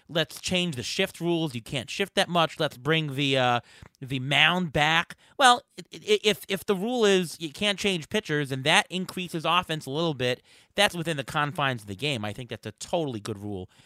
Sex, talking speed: male, 210 wpm